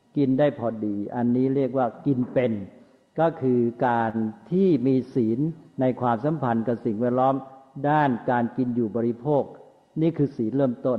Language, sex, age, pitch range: Thai, male, 60-79, 125-160 Hz